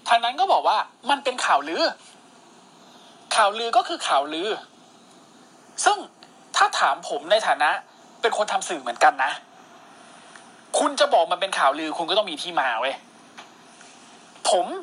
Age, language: 20-39, Thai